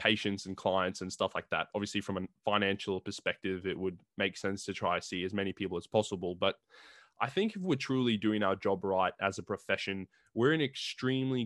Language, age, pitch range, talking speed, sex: English, 20-39, 100-125 Hz, 220 wpm, male